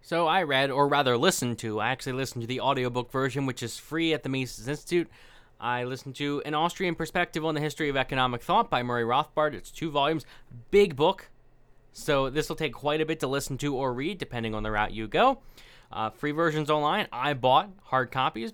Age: 20-39